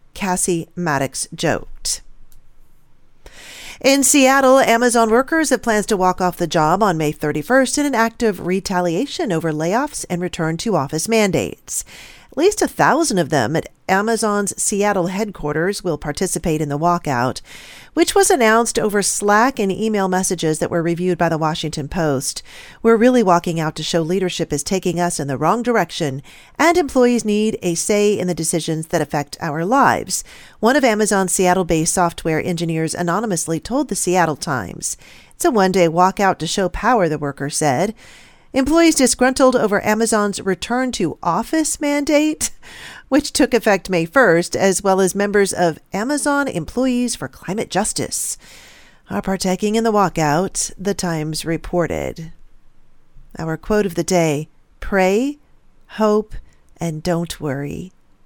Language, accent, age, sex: English, American, 40-59, female